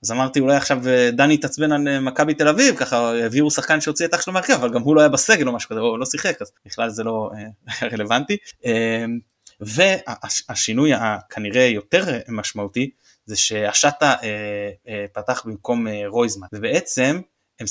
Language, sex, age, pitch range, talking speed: Hebrew, male, 20-39, 115-165 Hz, 155 wpm